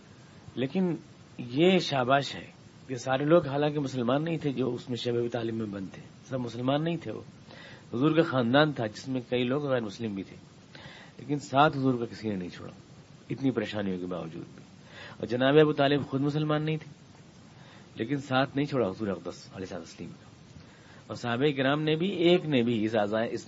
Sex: male